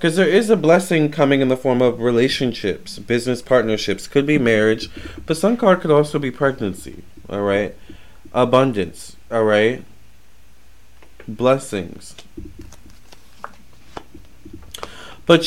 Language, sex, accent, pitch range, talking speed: English, male, American, 100-125 Hz, 115 wpm